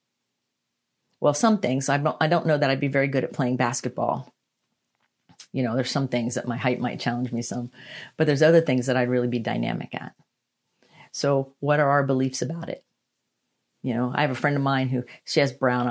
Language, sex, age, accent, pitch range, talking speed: English, female, 40-59, American, 125-145 Hz, 215 wpm